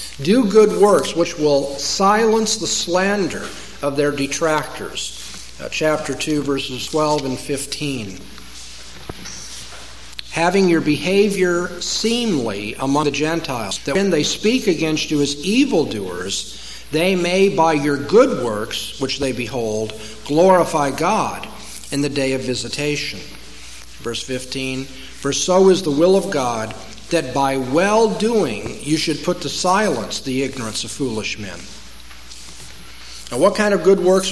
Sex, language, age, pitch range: male, English, 50-69, 135-185 Hz